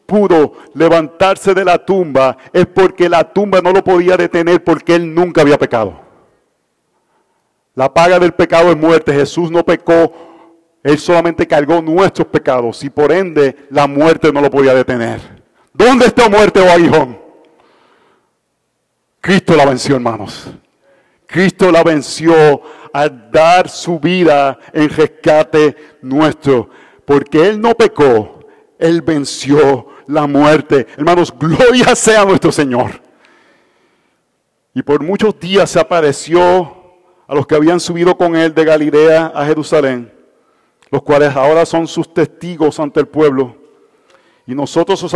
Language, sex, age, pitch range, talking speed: Spanish, male, 50-69, 145-175 Hz, 135 wpm